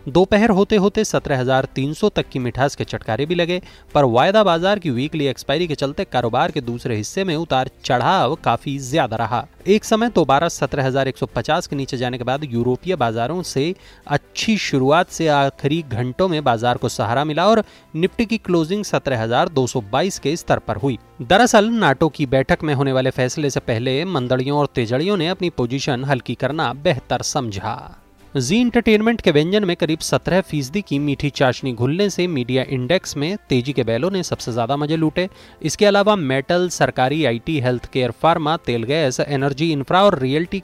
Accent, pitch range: Indian, 130-175 Hz